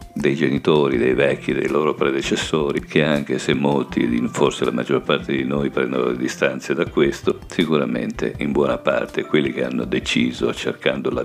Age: 50-69